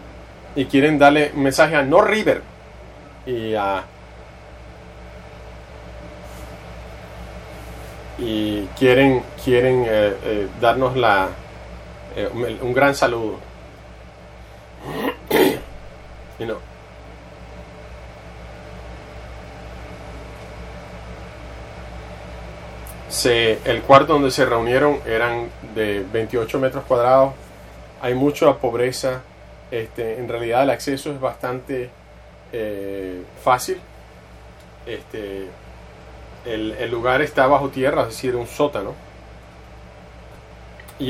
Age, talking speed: 30-49, 90 wpm